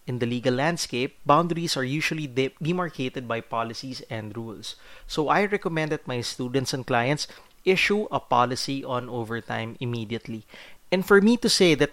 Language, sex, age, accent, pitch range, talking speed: English, male, 30-49, Filipino, 120-170 Hz, 160 wpm